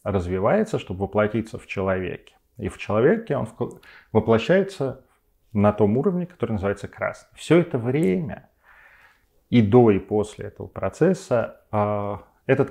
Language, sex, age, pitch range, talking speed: Russian, male, 30-49, 95-125 Hz, 125 wpm